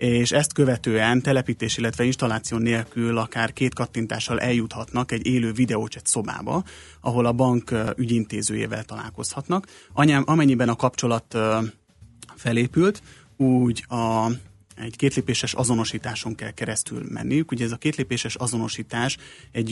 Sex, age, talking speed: male, 30-49, 120 wpm